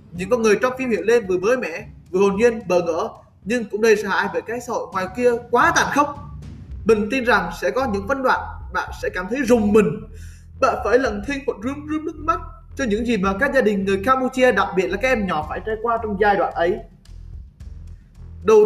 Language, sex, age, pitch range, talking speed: Vietnamese, male, 20-39, 170-255 Hz, 240 wpm